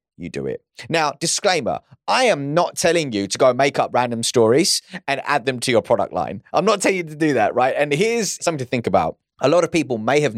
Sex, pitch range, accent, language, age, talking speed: male, 110-170 Hz, British, English, 30-49, 250 wpm